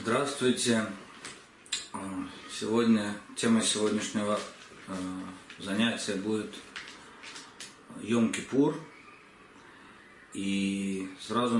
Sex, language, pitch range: male, Russian, 95-120 Hz